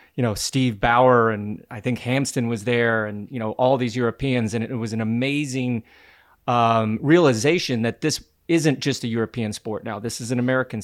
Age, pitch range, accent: 30-49, 115-135 Hz, American